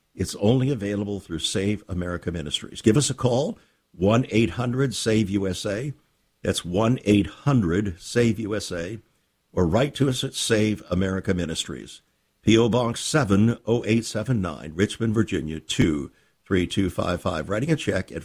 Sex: male